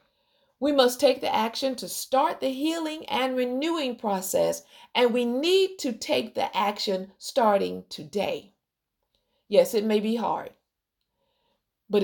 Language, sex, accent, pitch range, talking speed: English, female, American, 200-275 Hz, 135 wpm